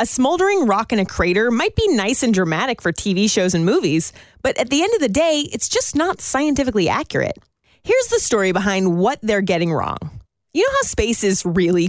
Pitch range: 195-285 Hz